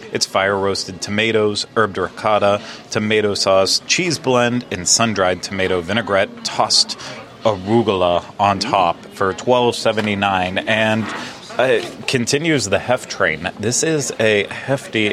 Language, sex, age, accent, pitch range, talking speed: English, male, 30-49, American, 100-120 Hz, 115 wpm